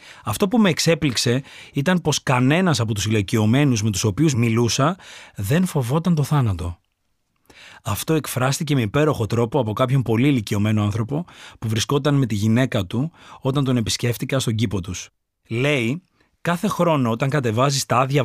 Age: 30-49